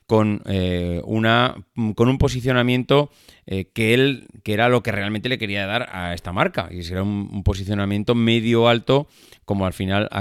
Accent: Spanish